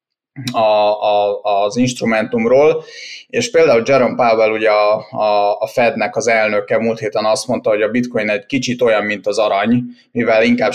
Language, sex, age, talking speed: Hungarian, male, 30-49, 150 wpm